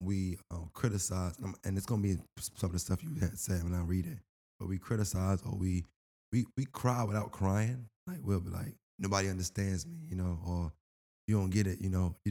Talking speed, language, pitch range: 225 wpm, English, 90-100 Hz